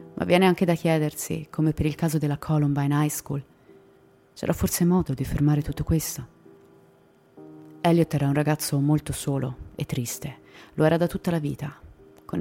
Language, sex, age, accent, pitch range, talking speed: Italian, female, 30-49, native, 140-170 Hz, 170 wpm